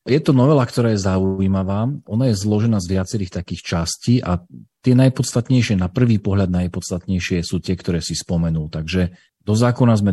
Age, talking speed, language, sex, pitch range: 40-59, 170 wpm, Slovak, male, 90-110 Hz